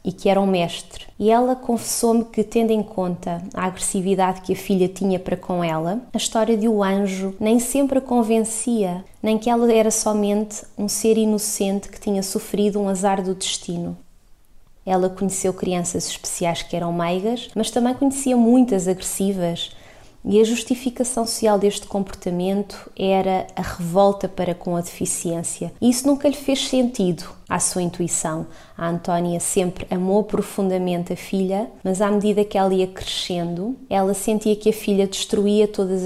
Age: 20-39